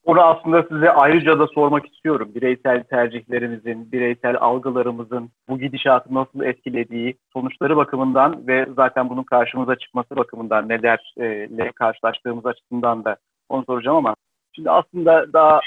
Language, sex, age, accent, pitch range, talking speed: Turkish, male, 40-59, native, 120-140 Hz, 125 wpm